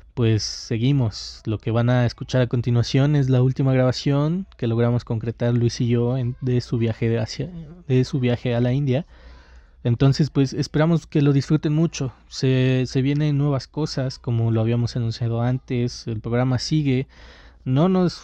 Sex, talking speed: male, 160 wpm